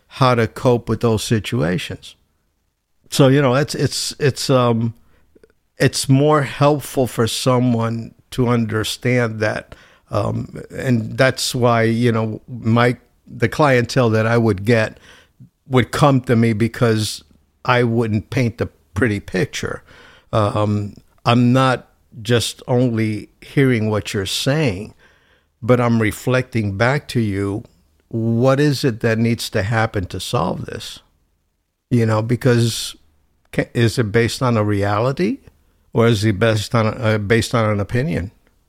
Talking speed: 140 wpm